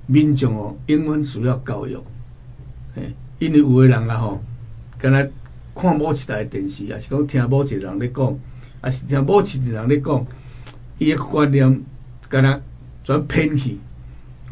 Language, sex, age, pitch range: Chinese, male, 60-79, 125-150 Hz